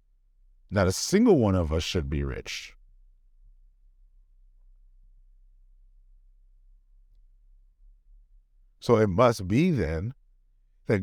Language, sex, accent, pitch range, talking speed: English, male, American, 80-110 Hz, 80 wpm